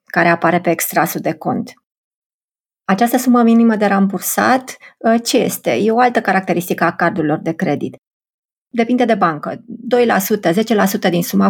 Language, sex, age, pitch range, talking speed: Romanian, female, 30-49, 180-230 Hz, 145 wpm